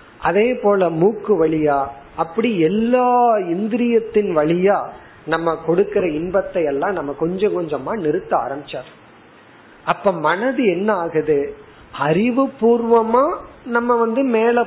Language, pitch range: Tamil, 175-245 Hz